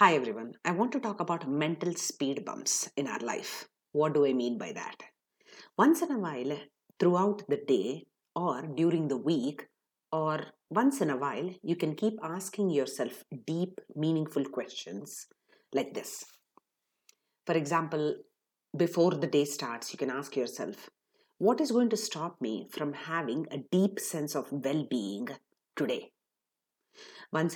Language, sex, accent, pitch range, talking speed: English, female, Indian, 150-215 Hz, 150 wpm